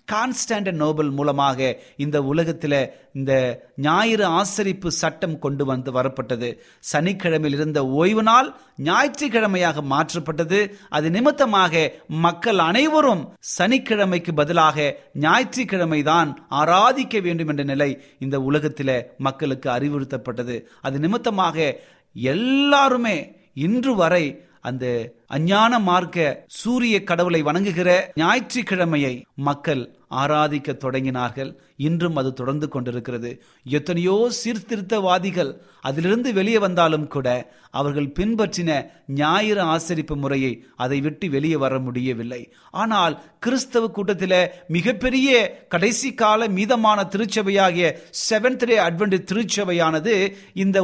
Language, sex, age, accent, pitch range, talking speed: Tamil, male, 30-49, native, 145-205 Hz, 95 wpm